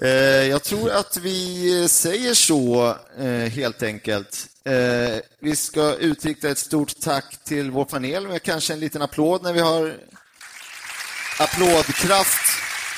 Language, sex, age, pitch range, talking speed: English, male, 30-49, 120-165 Hz, 120 wpm